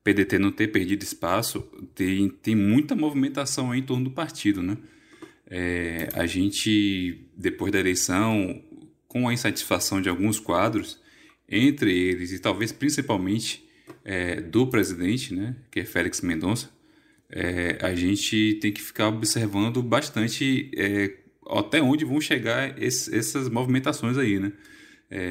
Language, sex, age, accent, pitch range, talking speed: Portuguese, male, 20-39, Brazilian, 95-130 Hz, 140 wpm